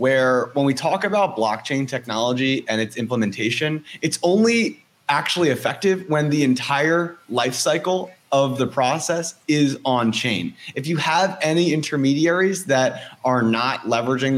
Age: 30-49